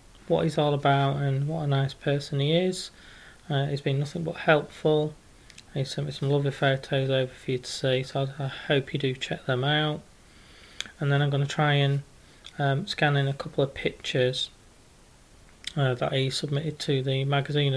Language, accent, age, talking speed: English, British, 20-39, 195 wpm